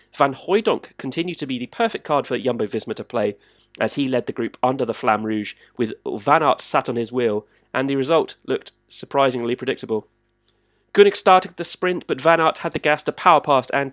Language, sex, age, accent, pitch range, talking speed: English, male, 30-49, British, 120-175 Hz, 205 wpm